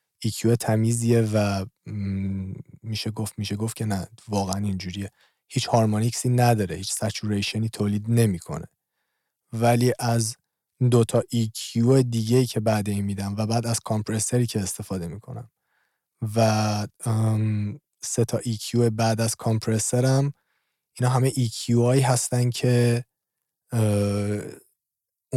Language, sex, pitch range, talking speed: Persian, male, 105-120 Hz, 115 wpm